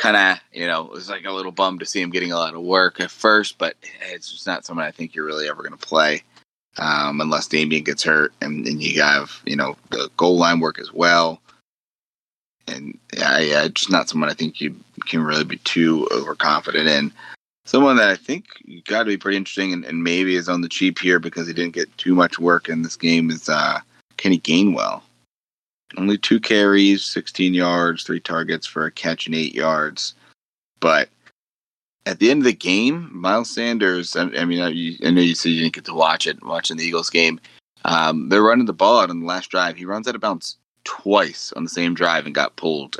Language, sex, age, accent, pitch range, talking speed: English, male, 30-49, American, 80-95 Hz, 220 wpm